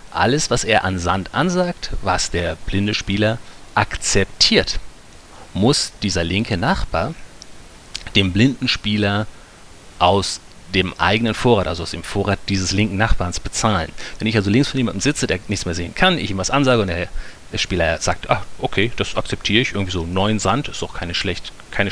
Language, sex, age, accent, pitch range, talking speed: German, male, 40-59, German, 95-130 Hz, 170 wpm